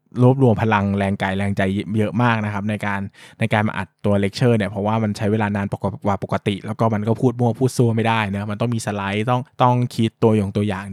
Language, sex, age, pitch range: Thai, male, 20-39, 110-145 Hz